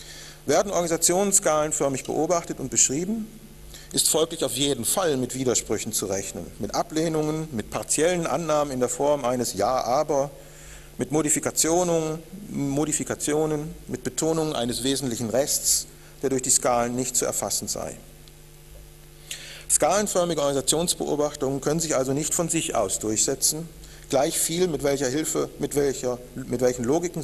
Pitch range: 125-155 Hz